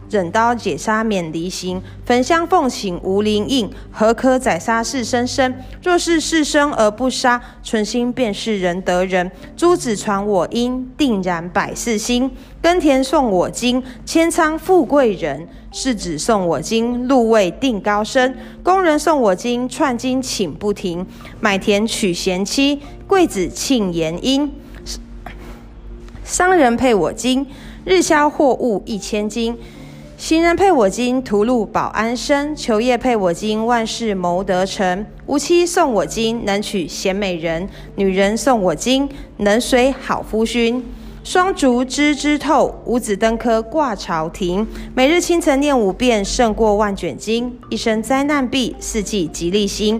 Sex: female